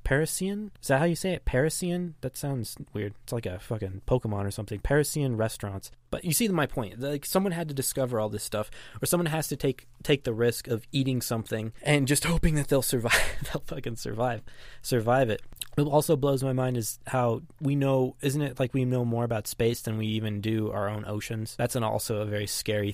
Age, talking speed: 20-39, 220 wpm